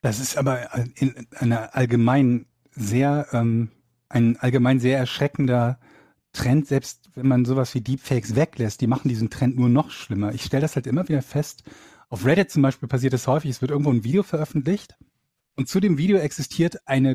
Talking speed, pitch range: 170 wpm, 120-155 Hz